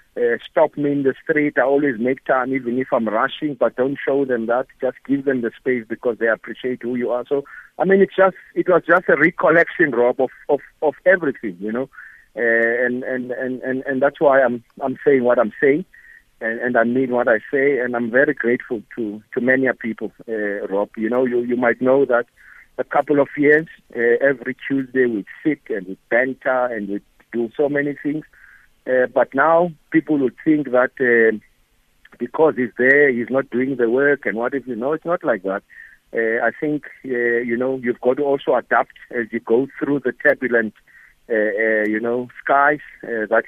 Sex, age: male, 60-79